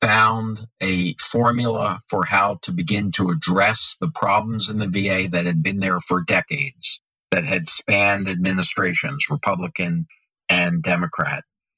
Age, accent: 50-69, American